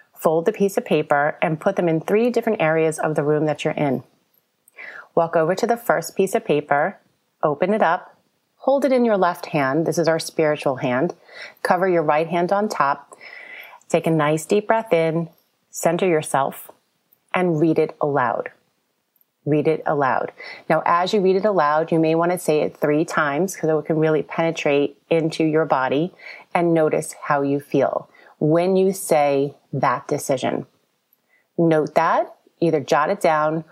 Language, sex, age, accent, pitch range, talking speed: English, female, 30-49, American, 155-200 Hz, 175 wpm